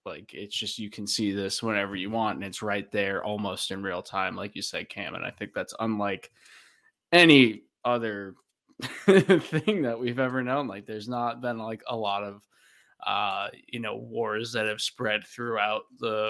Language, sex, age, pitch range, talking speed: English, male, 20-39, 100-115 Hz, 190 wpm